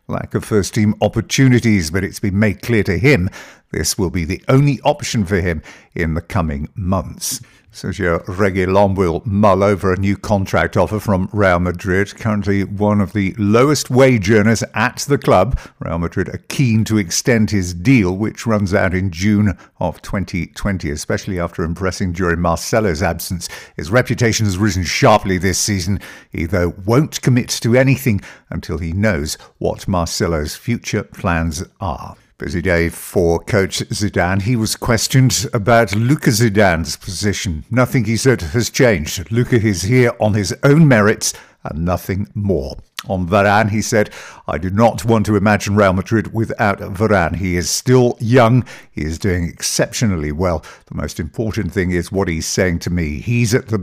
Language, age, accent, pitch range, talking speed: English, 50-69, British, 90-115 Hz, 170 wpm